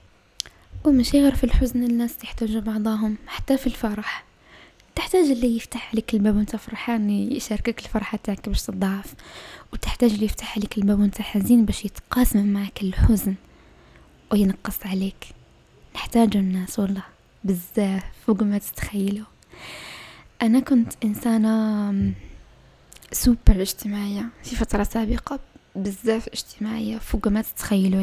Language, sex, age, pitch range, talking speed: Arabic, female, 10-29, 200-230 Hz, 120 wpm